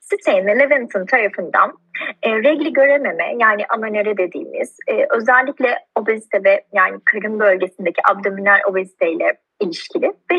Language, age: Turkish, 30-49